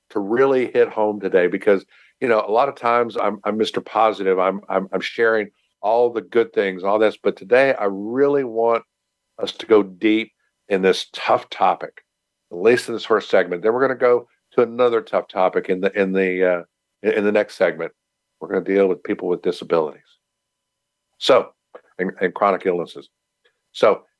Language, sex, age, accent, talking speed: English, male, 50-69, American, 190 wpm